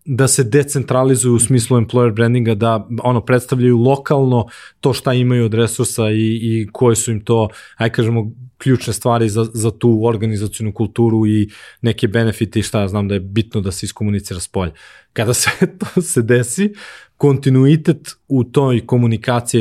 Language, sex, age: English, male, 20-39